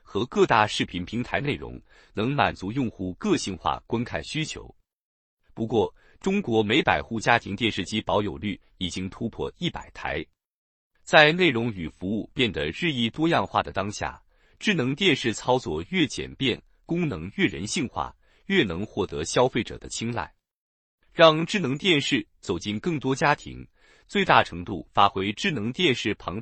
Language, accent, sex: Chinese, native, male